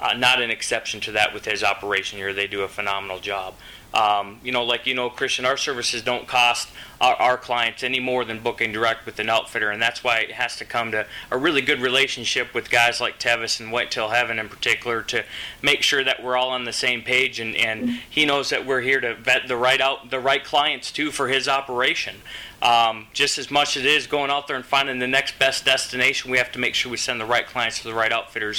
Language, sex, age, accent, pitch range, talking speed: English, male, 20-39, American, 110-125 Hz, 245 wpm